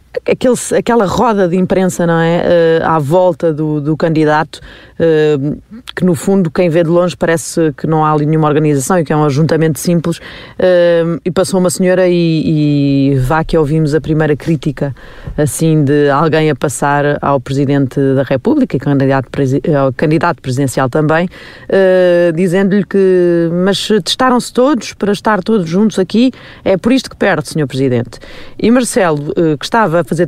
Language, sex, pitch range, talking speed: Portuguese, female, 155-200 Hz, 160 wpm